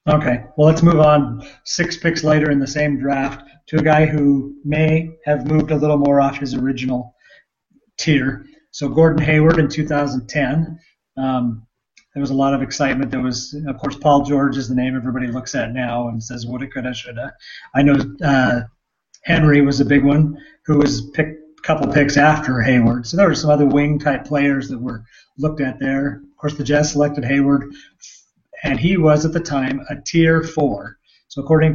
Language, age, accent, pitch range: English, 30-49, American, 130-150 Hz